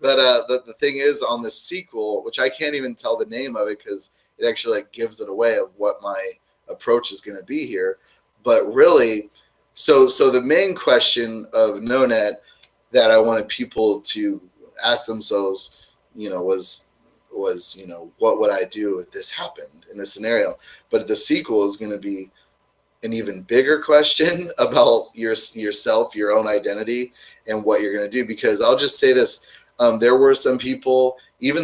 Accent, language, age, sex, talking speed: American, English, 20-39, male, 190 wpm